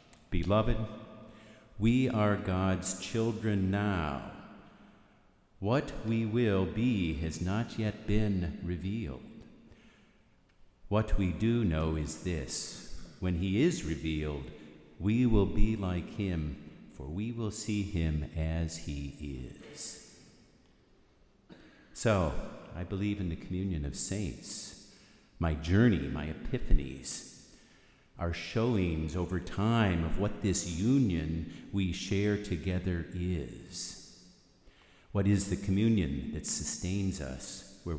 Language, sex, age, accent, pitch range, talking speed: English, male, 50-69, American, 80-105 Hz, 110 wpm